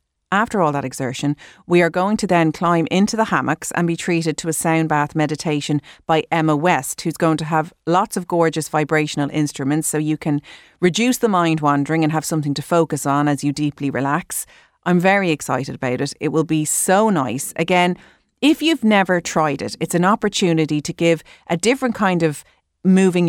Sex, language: female, English